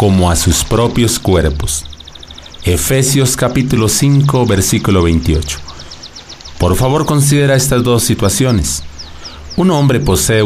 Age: 40-59